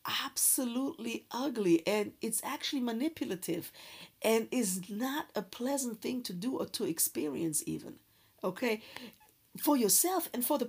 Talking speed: 135 wpm